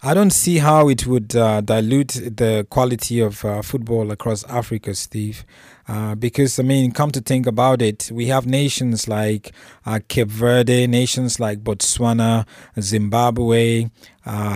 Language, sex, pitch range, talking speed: English, male, 115-130 Hz, 155 wpm